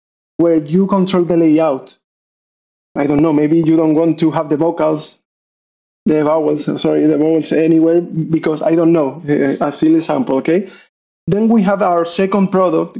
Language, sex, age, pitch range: English, male, 20-39, 160-195 Hz